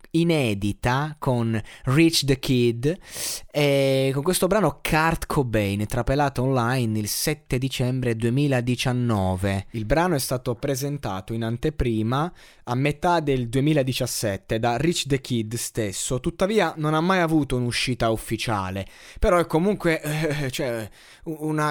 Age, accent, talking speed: 20-39, native, 125 wpm